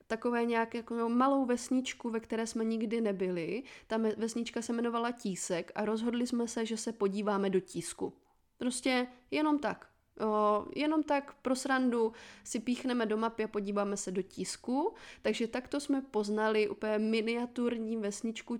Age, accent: 20-39, native